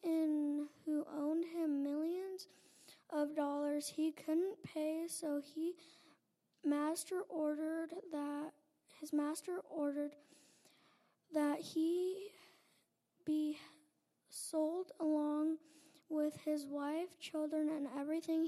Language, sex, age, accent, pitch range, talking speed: English, female, 20-39, American, 295-325 Hz, 90 wpm